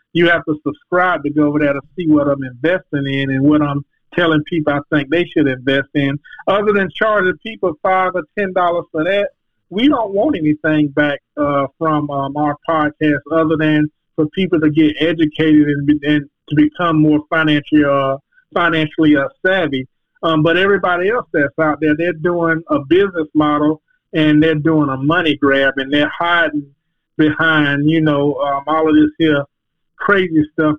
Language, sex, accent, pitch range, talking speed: English, male, American, 150-170 Hz, 180 wpm